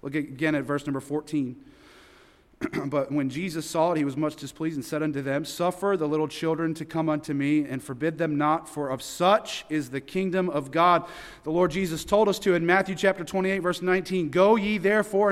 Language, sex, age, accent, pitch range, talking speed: English, male, 40-59, American, 145-190 Hz, 210 wpm